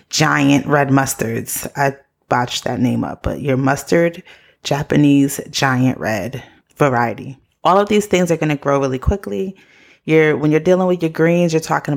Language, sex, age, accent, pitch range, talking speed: English, female, 20-39, American, 135-170 Hz, 170 wpm